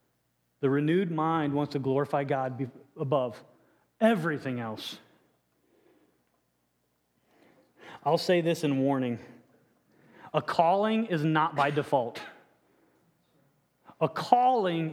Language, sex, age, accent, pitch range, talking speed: English, male, 30-49, American, 160-250 Hz, 90 wpm